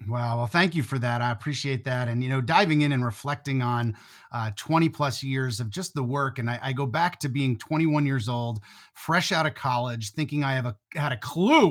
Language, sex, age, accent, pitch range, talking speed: English, male, 30-49, American, 125-155 Hz, 240 wpm